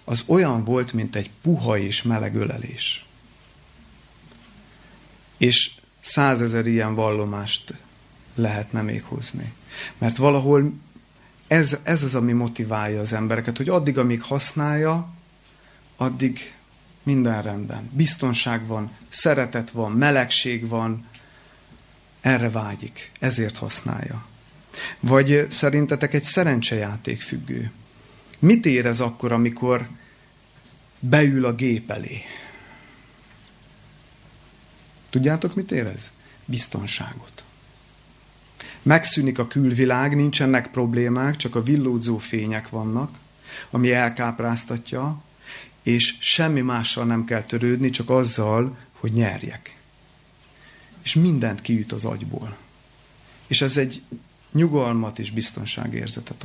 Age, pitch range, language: 30-49, 115-140 Hz, Hungarian